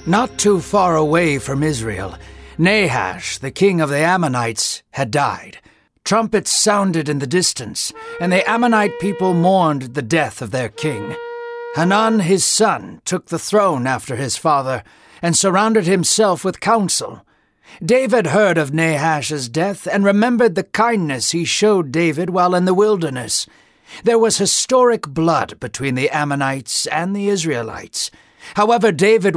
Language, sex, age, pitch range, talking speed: English, male, 60-79, 150-200 Hz, 145 wpm